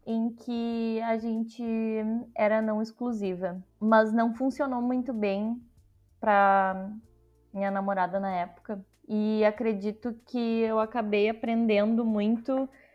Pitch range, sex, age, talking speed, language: 210-250 Hz, female, 20-39, 110 wpm, Portuguese